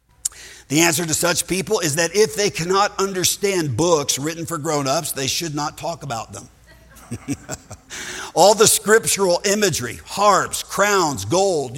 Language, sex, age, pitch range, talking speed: English, male, 50-69, 140-185 Hz, 145 wpm